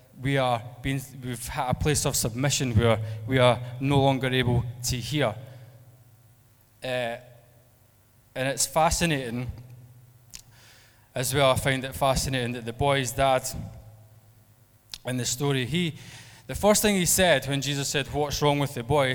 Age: 20-39